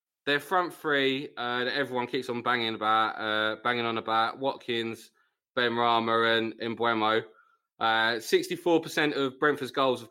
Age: 20-39